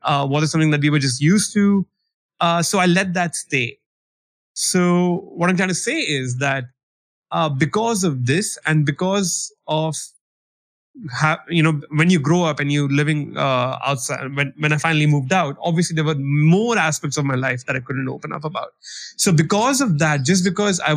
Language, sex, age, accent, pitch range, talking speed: English, male, 30-49, Indian, 140-170 Hz, 195 wpm